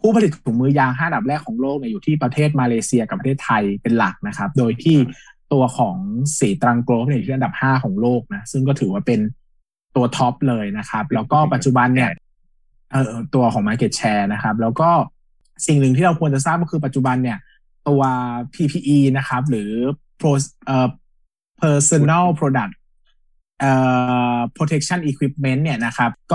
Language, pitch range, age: Thai, 125-150 Hz, 20-39